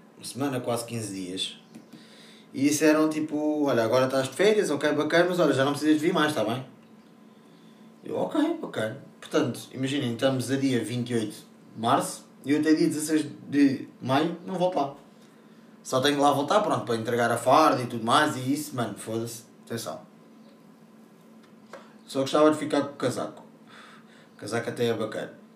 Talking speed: 180 wpm